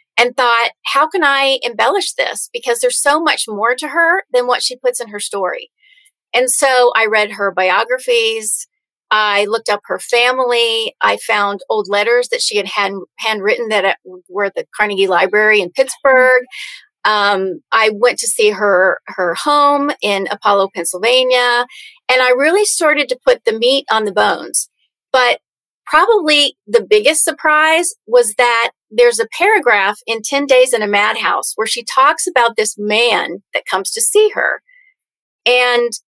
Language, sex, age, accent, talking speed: English, female, 30-49, American, 165 wpm